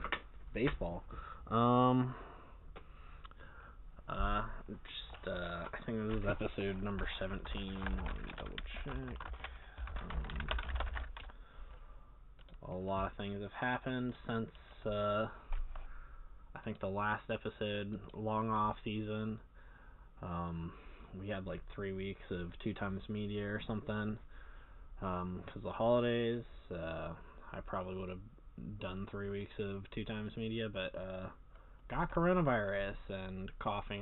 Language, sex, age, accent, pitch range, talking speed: English, male, 20-39, American, 95-110 Hz, 120 wpm